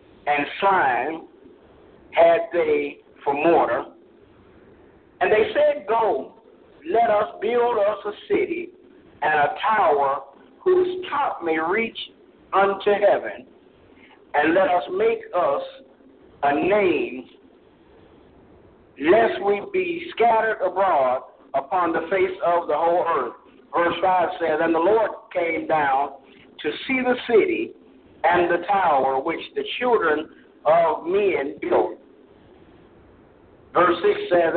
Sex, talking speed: male, 120 wpm